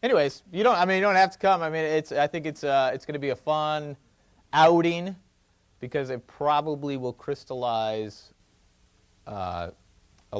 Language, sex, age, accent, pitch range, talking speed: English, male, 40-59, American, 100-155 Hz, 180 wpm